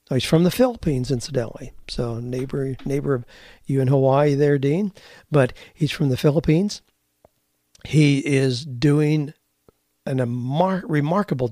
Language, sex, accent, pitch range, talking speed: English, male, American, 130-150 Hz, 125 wpm